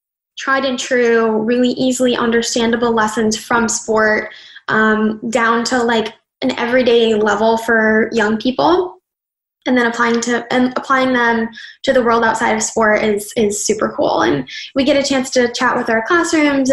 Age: 10-29